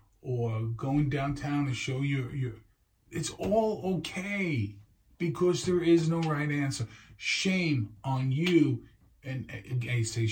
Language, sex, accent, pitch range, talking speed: English, male, American, 100-135 Hz, 120 wpm